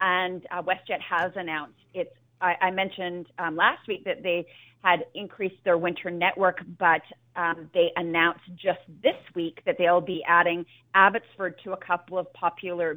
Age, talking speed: 30-49, 160 wpm